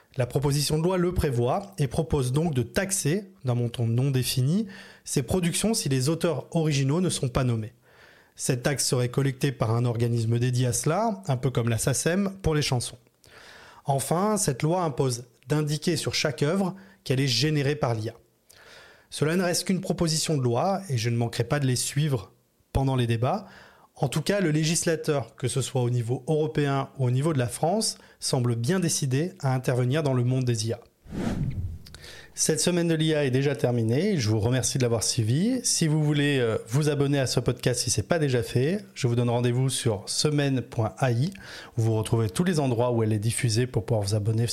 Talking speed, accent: 200 wpm, French